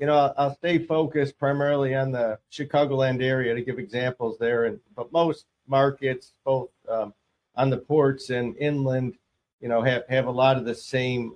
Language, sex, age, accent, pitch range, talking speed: English, male, 50-69, American, 130-150 Hz, 180 wpm